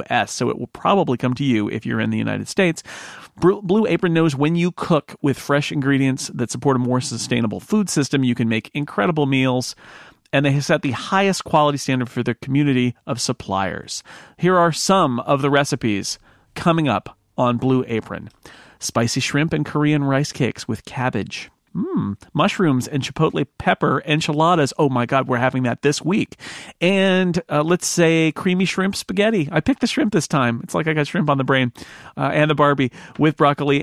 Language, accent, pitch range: English, American, 125-160 Hz